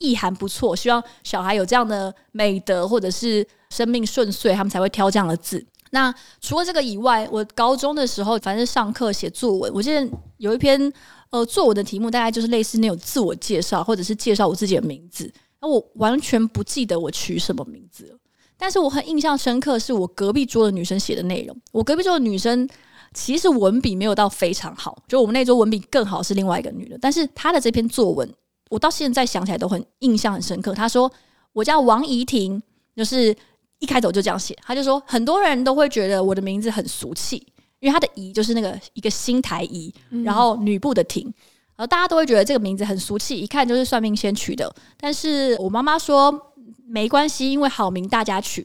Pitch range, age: 205-265 Hz, 20-39